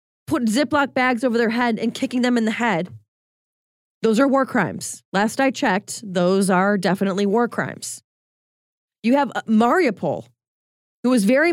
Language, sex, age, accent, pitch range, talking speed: English, female, 20-39, American, 185-235 Hz, 155 wpm